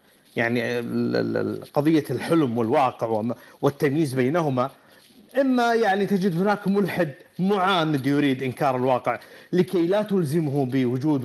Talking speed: 100 wpm